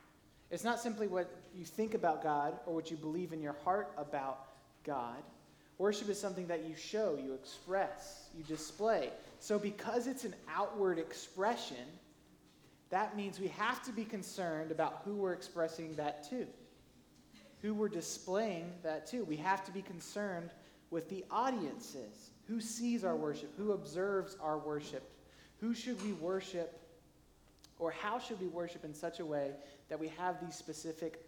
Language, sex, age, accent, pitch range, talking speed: English, male, 20-39, American, 150-185 Hz, 165 wpm